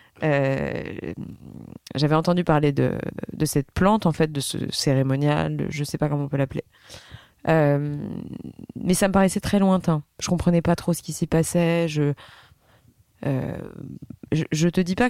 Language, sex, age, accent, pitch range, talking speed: French, female, 20-39, French, 150-180 Hz, 165 wpm